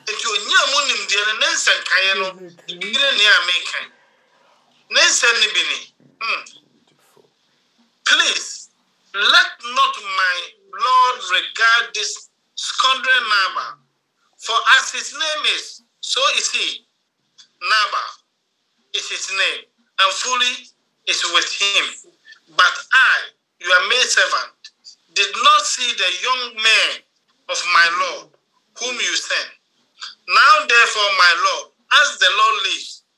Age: 50-69